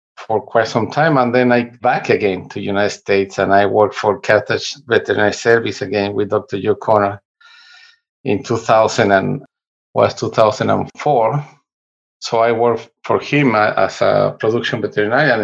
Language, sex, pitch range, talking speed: English, male, 105-130 Hz, 150 wpm